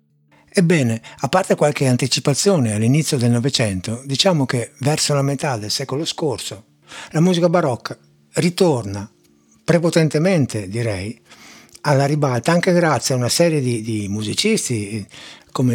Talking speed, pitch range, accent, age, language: 125 wpm, 115-155 Hz, native, 60-79, Italian